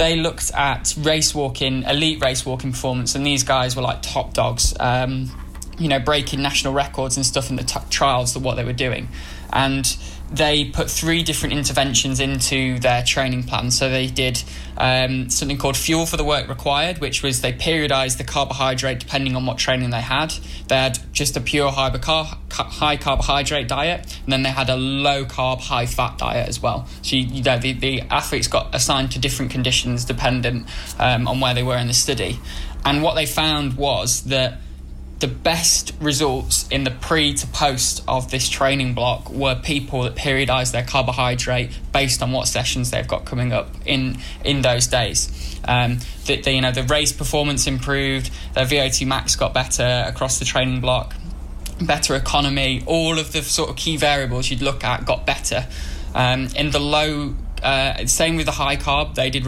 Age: 10-29